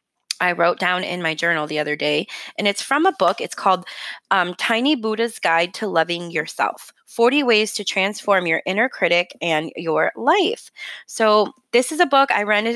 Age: 20-39